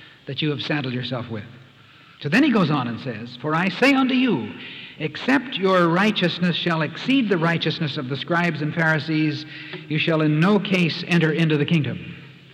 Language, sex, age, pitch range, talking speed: English, male, 60-79, 140-205 Hz, 185 wpm